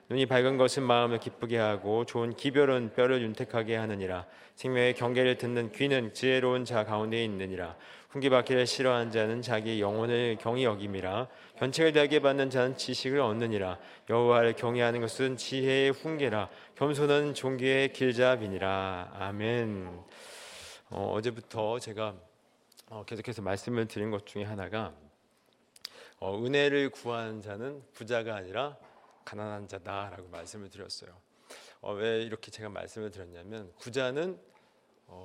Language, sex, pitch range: Korean, male, 105-130 Hz